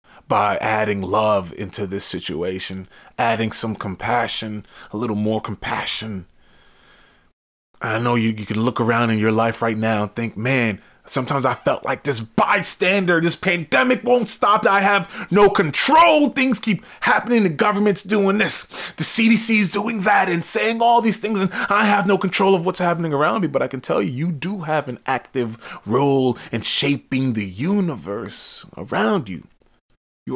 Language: English